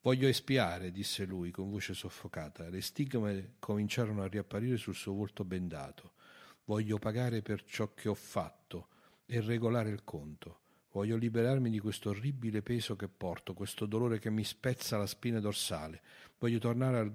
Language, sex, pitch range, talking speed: Italian, male, 95-115 Hz, 160 wpm